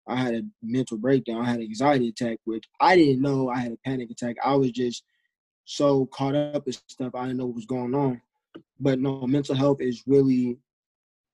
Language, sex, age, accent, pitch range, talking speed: English, male, 20-39, American, 125-140 Hz, 210 wpm